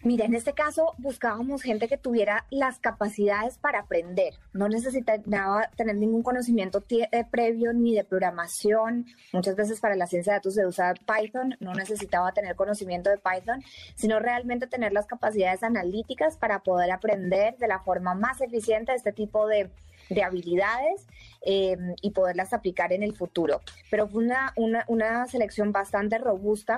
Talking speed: 165 wpm